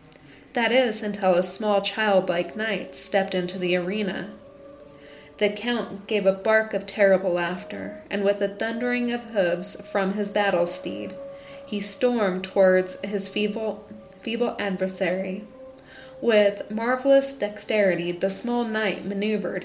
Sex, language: female, English